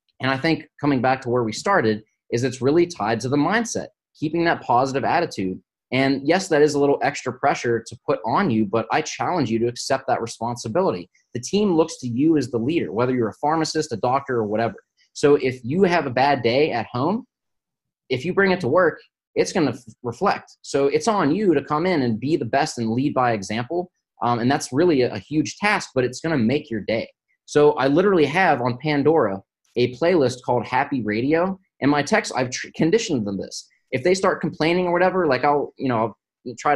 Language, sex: English, male